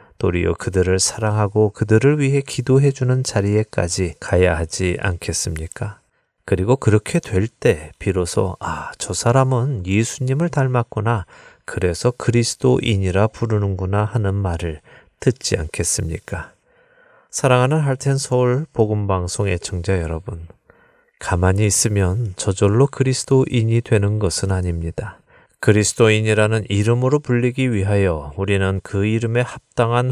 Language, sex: Korean, male